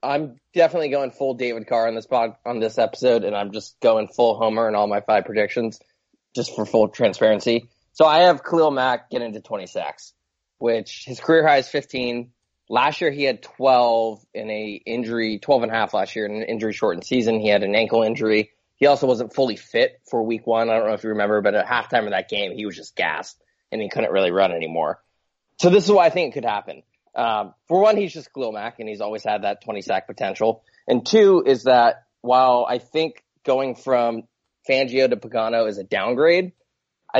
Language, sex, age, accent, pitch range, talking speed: English, male, 20-39, American, 110-135 Hz, 215 wpm